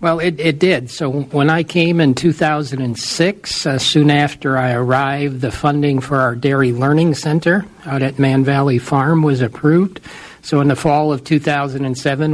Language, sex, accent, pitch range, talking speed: English, male, American, 135-155 Hz, 170 wpm